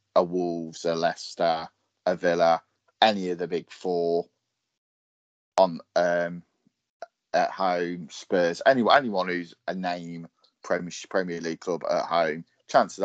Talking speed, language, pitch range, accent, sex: 135 wpm, English, 85-95 Hz, British, male